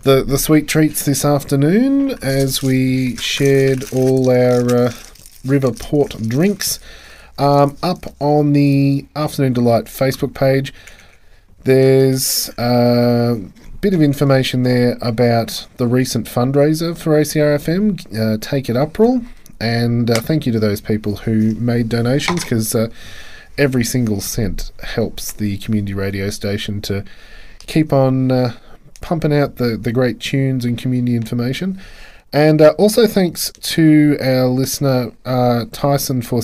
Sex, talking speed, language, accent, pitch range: male, 135 wpm, English, Australian, 110-140 Hz